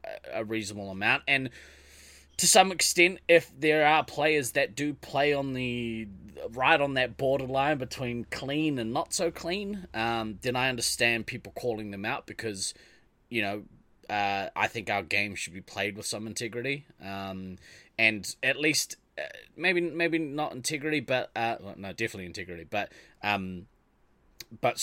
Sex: male